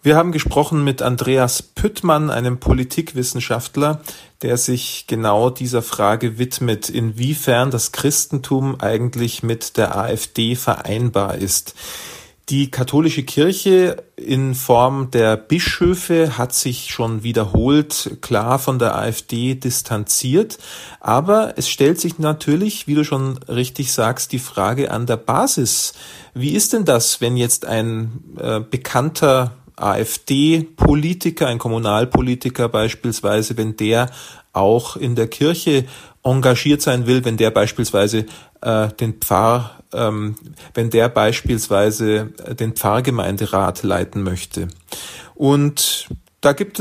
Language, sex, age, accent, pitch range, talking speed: German, male, 40-59, German, 115-140 Hz, 120 wpm